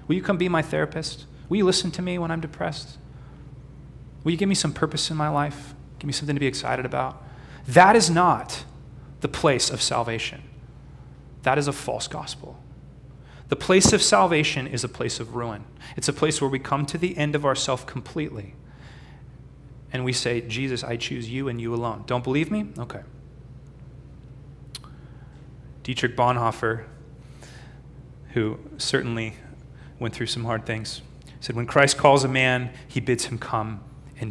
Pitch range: 125-165 Hz